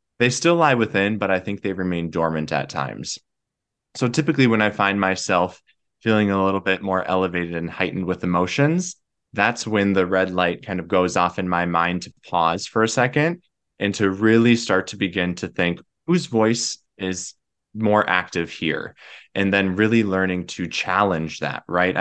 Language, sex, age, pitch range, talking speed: English, male, 20-39, 90-105 Hz, 185 wpm